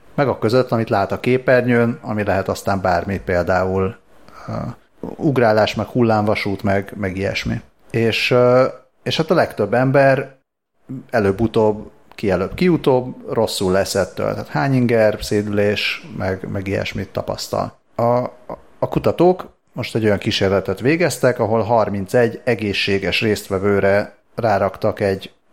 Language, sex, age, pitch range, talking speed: Hungarian, male, 30-49, 100-125 Hz, 125 wpm